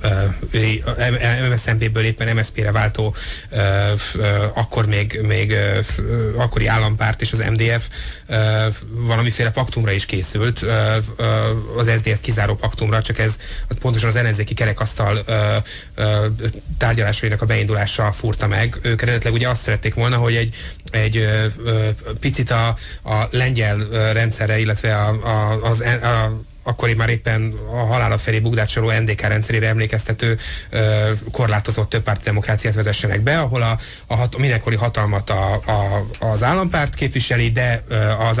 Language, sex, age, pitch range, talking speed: Hungarian, male, 30-49, 105-115 Hz, 125 wpm